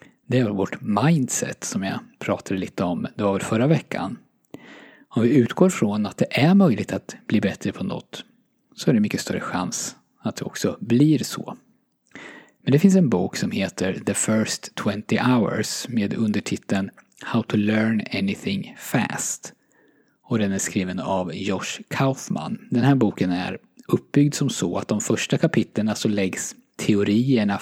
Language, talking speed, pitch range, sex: Swedish, 165 wpm, 105-140 Hz, male